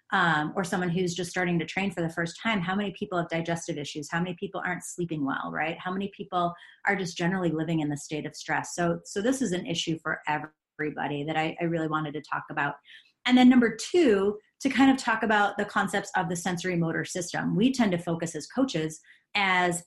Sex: female